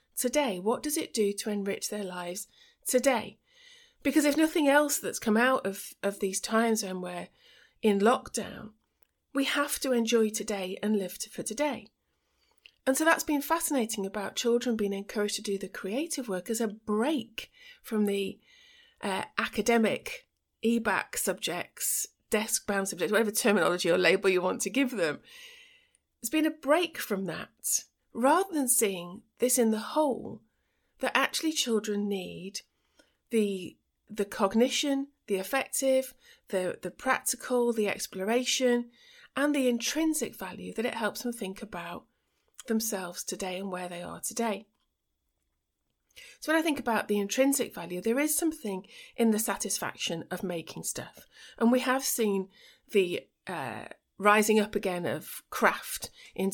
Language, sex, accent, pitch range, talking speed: English, female, British, 195-275 Hz, 150 wpm